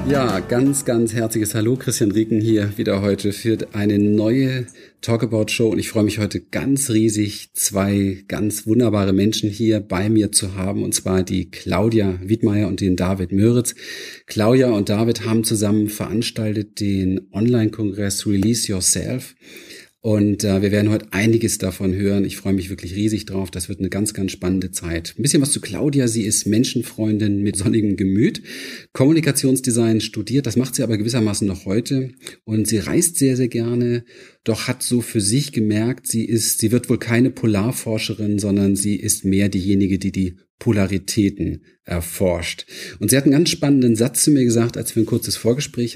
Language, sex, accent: German, male, German